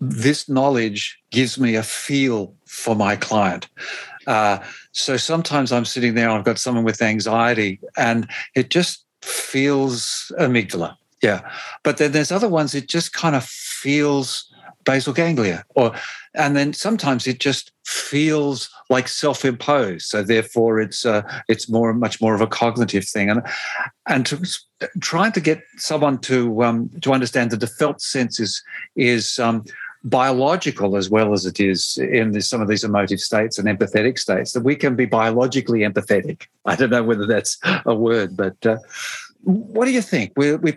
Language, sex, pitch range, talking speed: English, male, 115-145 Hz, 165 wpm